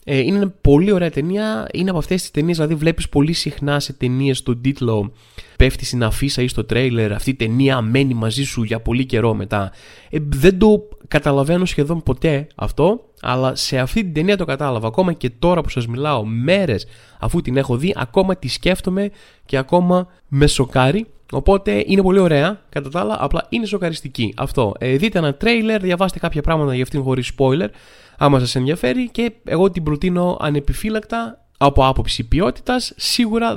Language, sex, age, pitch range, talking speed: Greek, male, 20-39, 130-175 Hz, 175 wpm